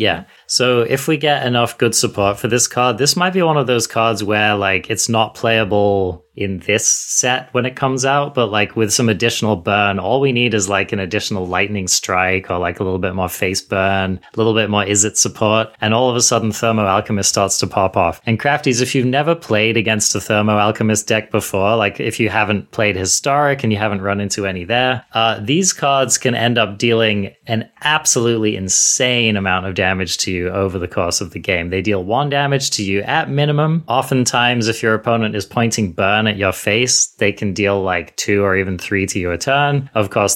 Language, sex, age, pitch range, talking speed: English, male, 30-49, 100-125 Hz, 220 wpm